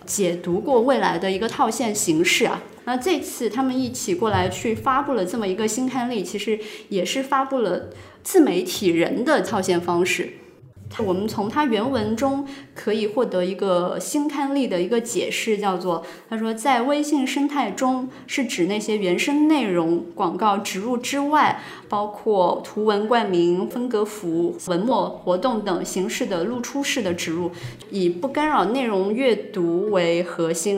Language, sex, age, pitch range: Chinese, female, 20-39, 180-255 Hz